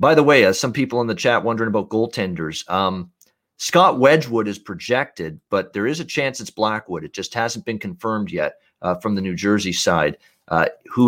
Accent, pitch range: American, 90-110 Hz